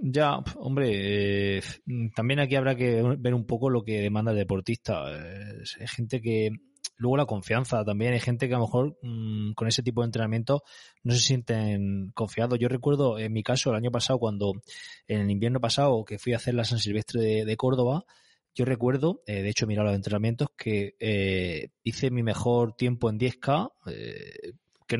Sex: male